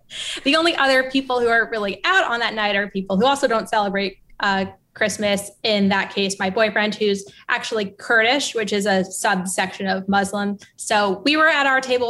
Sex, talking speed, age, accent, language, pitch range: female, 195 wpm, 20-39, American, English, 200-245 Hz